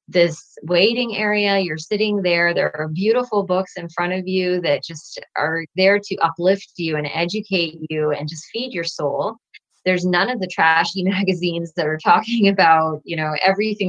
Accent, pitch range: American, 170-205 Hz